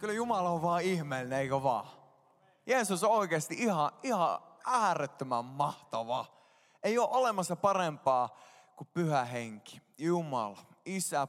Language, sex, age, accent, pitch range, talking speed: Finnish, male, 20-39, native, 160-205 Hz, 120 wpm